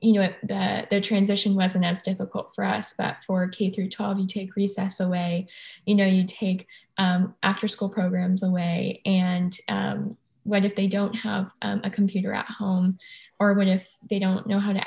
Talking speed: 195 wpm